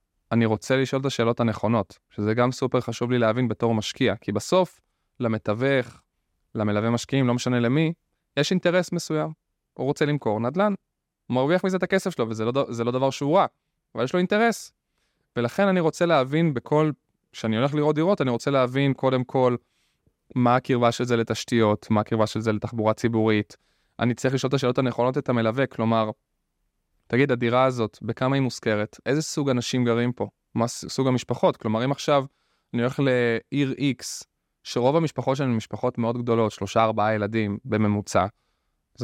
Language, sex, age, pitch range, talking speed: Hebrew, male, 20-39, 115-140 Hz, 170 wpm